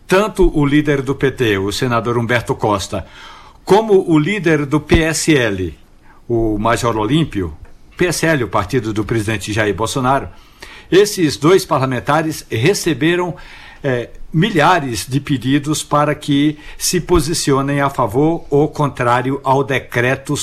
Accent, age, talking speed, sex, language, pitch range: Brazilian, 60-79, 125 wpm, male, Portuguese, 120-165 Hz